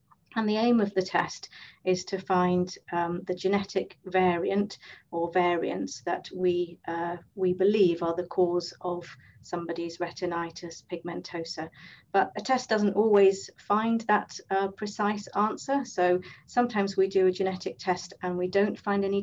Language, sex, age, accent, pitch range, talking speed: English, female, 40-59, British, 180-200 Hz, 150 wpm